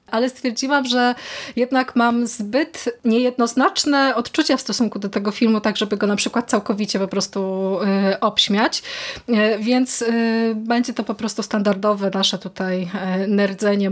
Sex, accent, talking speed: female, native, 135 wpm